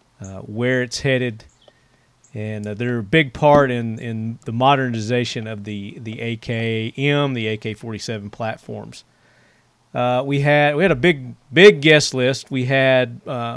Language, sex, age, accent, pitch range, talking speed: English, male, 40-59, American, 120-145 Hz, 150 wpm